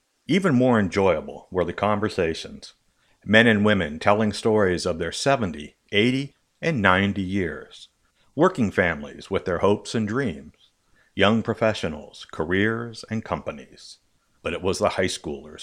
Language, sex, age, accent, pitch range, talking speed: English, male, 60-79, American, 95-125 Hz, 140 wpm